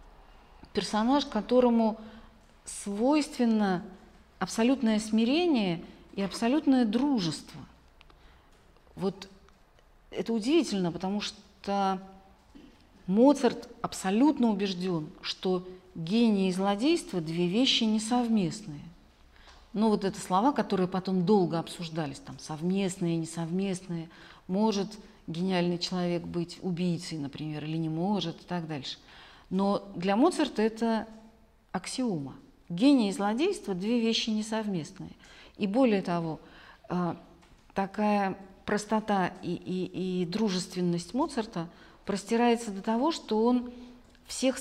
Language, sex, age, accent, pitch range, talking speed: Russian, female, 40-59, native, 175-225 Hz, 100 wpm